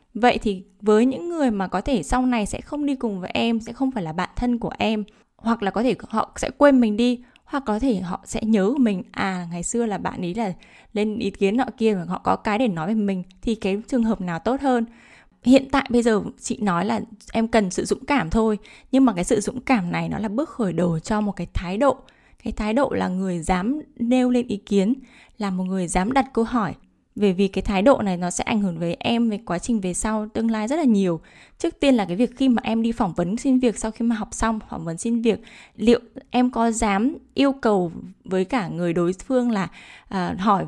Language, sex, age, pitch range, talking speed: Vietnamese, female, 10-29, 195-245 Hz, 250 wpm